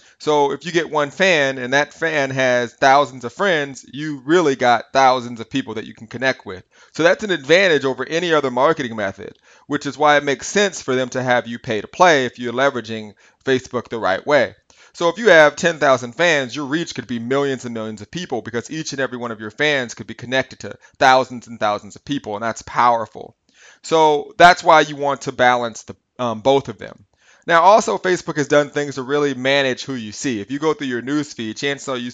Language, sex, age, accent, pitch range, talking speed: English, male, 30-49, American, 120-145 Hz, 230 wpm